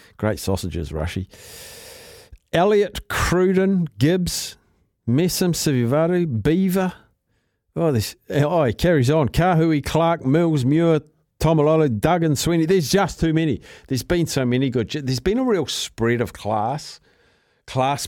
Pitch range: 110-160 Hz